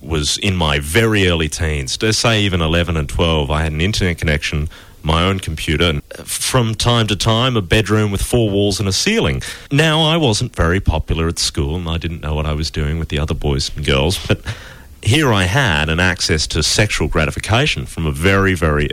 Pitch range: 75-100 Hz